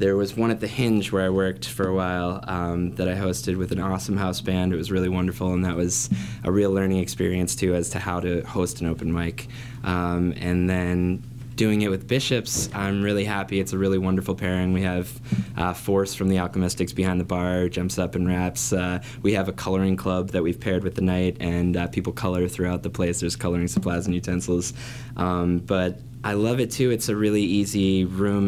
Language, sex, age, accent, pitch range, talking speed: English, male, 20-39, American, 90-100 Hz, 220 wpm